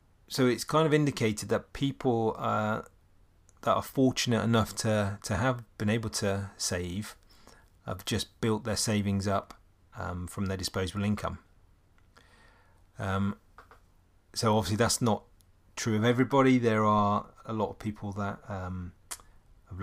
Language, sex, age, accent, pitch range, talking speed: English, male, 30-49, British, 95-110 Hz, 140 wpm